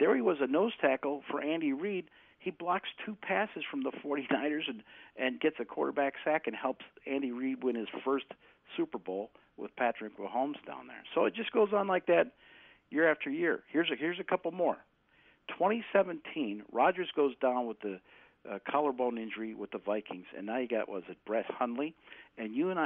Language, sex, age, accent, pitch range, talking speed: English, male, 50-69, American, 125-185 Hz, 200 wpm